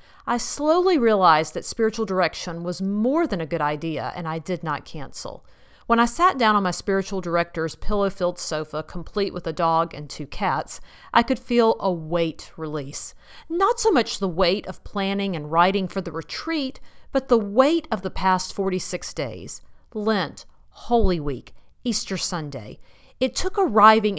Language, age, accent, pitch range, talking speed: English, 40-59, American, 175-245 Hz, 170 wpm